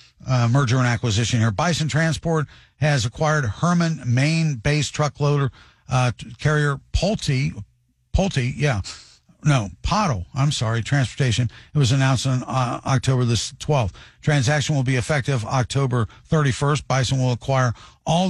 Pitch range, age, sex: 120-145 Hz, 50-69, male